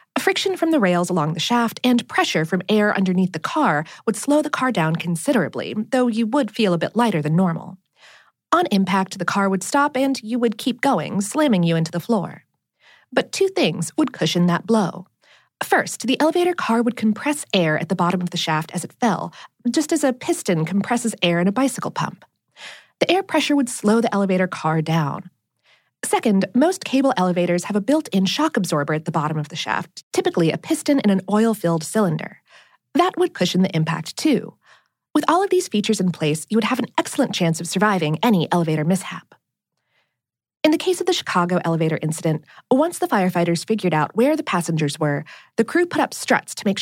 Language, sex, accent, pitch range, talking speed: English, female, American, 175-270 Hz, 200 wpm